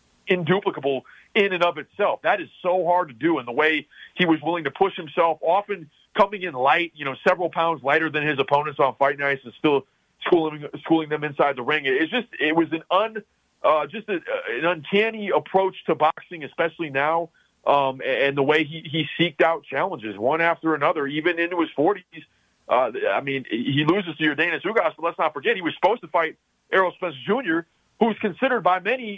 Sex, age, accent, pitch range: male, 40-59, American, 140-180 Hz